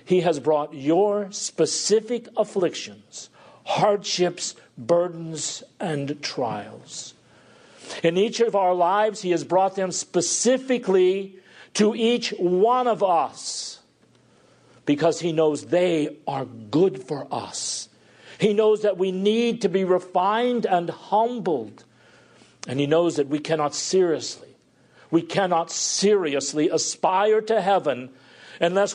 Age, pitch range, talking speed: 50-69, 125-195 Hz, 120 wpm